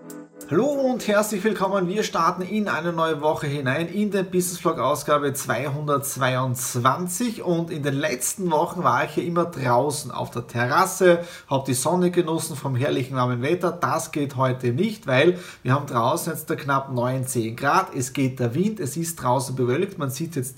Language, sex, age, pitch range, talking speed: German, male, 30-49, 130-175 Hz, 185 wpm